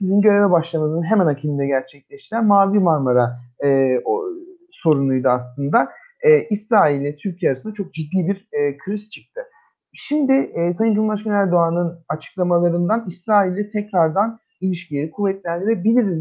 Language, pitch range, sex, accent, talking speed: Turkish, 165-225 Hz, male, native, 125 wpm